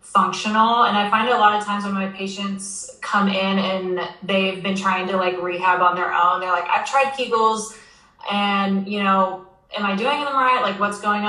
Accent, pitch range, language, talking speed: American, 185-210 Hz, English, 215 wpm